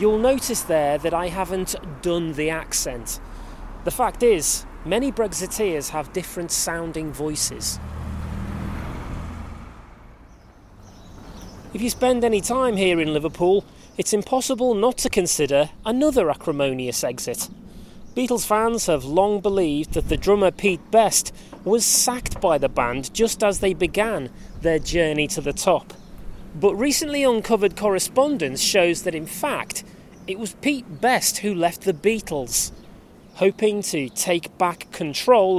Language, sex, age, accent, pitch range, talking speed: English, male, 30-49, British, 155-215 Hz, 135 wpm